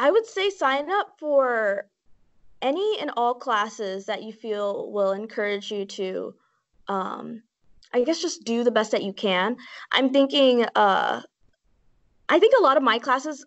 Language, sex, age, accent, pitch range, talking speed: English, female, 20-39, American, 210-280 Hz, 165 wpm